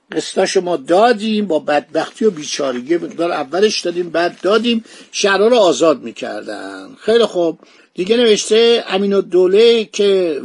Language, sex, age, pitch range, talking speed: Persian, male, 50-69, 160-210 Hz, 125 wpm